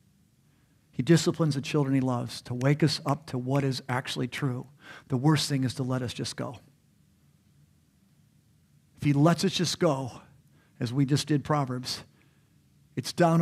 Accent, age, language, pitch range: American, 50-69, English, 135-175 Hz